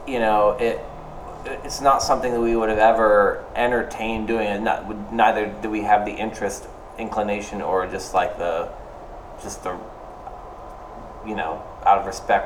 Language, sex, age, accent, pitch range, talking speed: English, male, 20-39, American, 100-120 Hz, 165 wpm